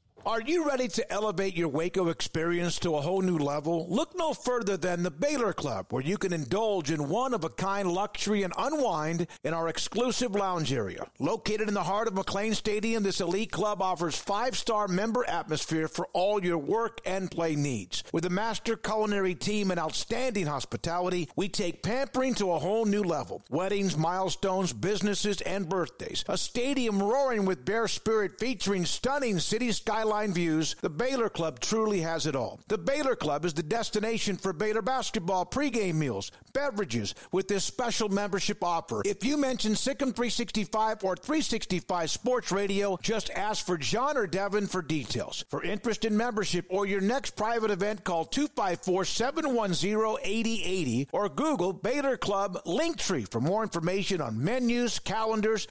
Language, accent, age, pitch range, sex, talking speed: English, American, 50-69, 175-225 Hz, male, 160 wpm